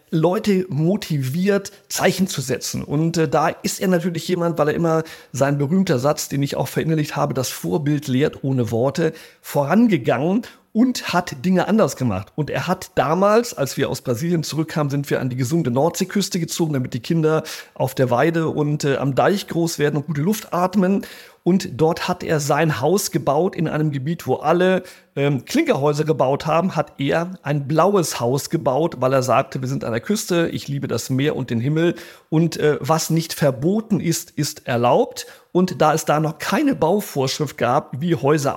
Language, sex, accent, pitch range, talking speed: German, male, German, 140-175 Hz, 190 wpm